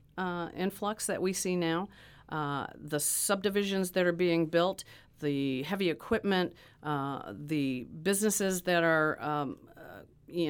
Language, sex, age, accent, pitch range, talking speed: English, female, 50-69, American, 140-175 Hz, 135 wpm